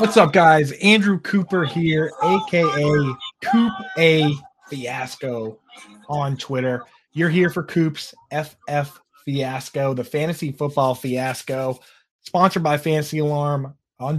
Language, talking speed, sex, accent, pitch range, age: English, 115 wpm, male, American, 130-165 Hz, 20-39